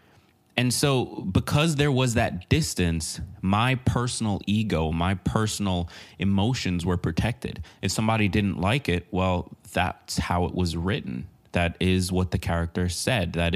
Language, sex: English, male